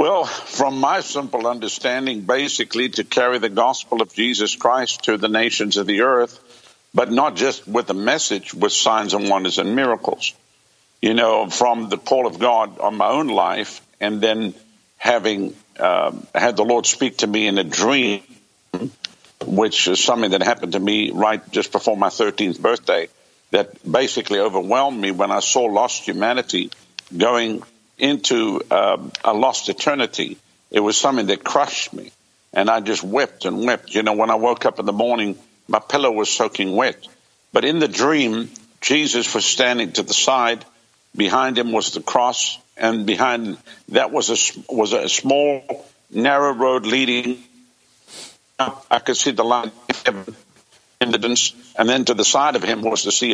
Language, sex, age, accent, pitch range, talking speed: English, male, 60-79, American, 110-125 Hz, 170 wpm